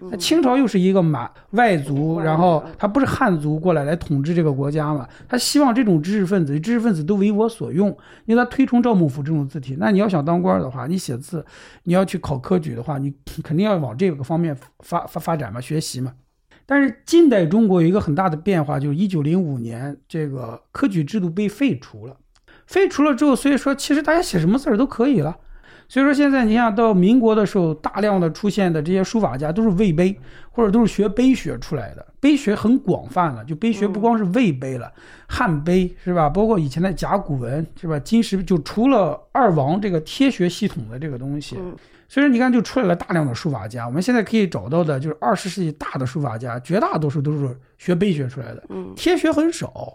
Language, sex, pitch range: Chinese, male, 150-225 Hz